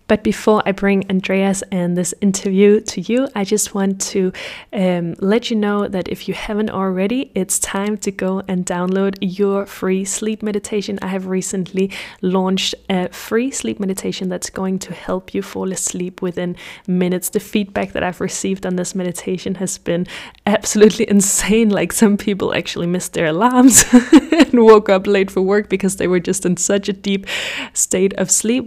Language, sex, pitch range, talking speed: English, female, 180-205 Hz, 180 wpm